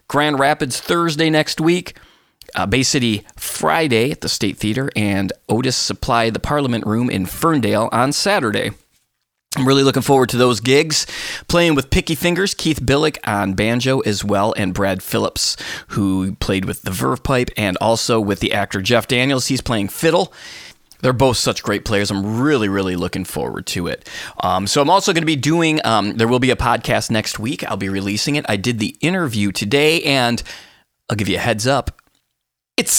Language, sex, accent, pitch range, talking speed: English, male, American, 95-130 Hz, 190 wpm